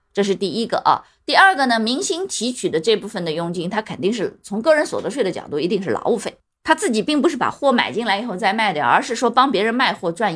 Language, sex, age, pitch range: Chinese, female, 20-39, 180-260 Hz